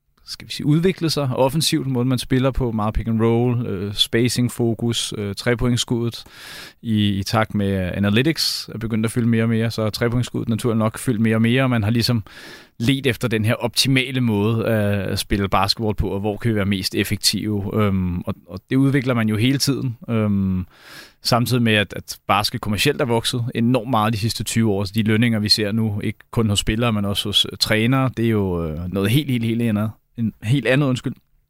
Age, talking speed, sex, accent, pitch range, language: 30-49, 210 wpm, male, native, 105-120 Hz, Danish